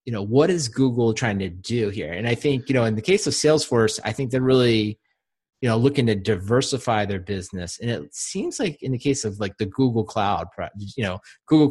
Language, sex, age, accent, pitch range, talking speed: English, male, 30-49, American, 110-135 Hz, 230 wpm